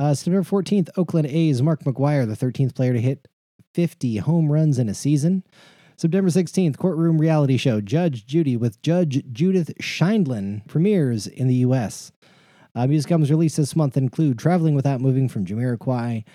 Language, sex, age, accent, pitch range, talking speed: English, male, 30-49, American, 120-155 Hz, 165 wpm